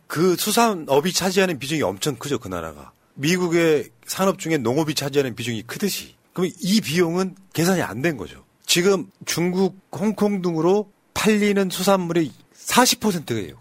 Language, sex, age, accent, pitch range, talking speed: English, male, 40-59, Korean, 140-195 Hz, 125 wpm